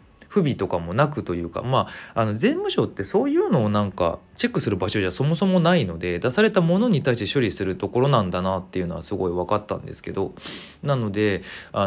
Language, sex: Japanese, male